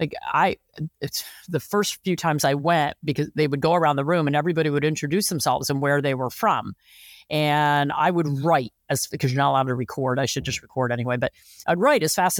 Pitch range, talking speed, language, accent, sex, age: 145-180 Hz, 230 wpm, English, American, female, 40-59